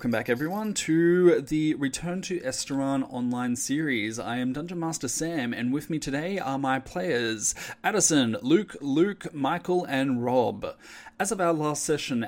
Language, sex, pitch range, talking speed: English, male, 120-145 Hz, 160 wpm